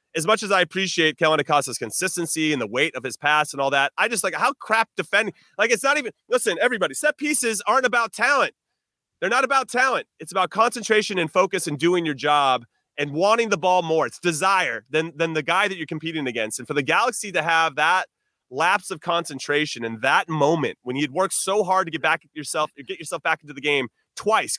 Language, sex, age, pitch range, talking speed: English, male, 30-49, 135-190 Hz, 225 wpm